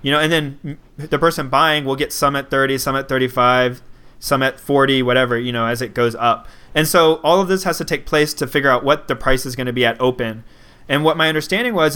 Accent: American